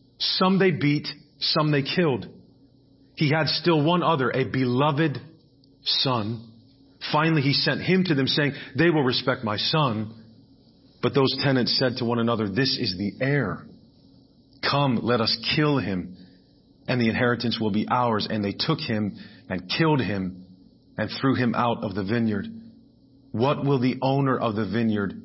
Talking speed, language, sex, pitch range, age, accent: 165 wpm, English, male, 110-135 Hz, 40-59, American